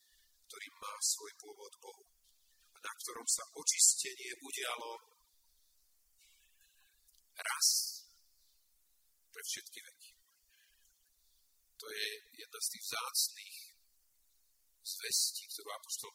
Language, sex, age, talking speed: Slovak, male, 50-69, 90 wpm